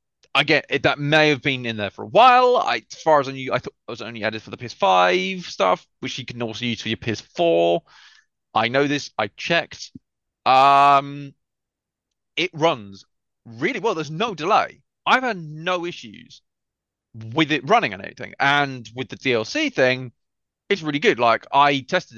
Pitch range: 115-165 Hz